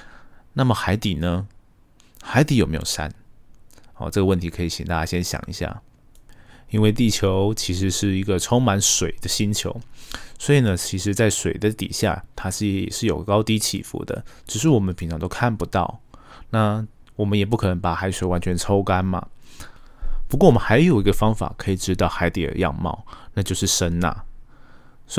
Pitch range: 85-110 Hz